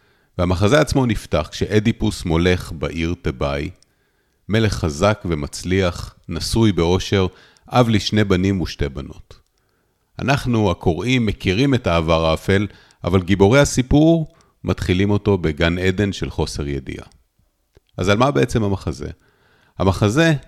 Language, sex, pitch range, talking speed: Hebrew, male, 85-115 Hz, 115 wpm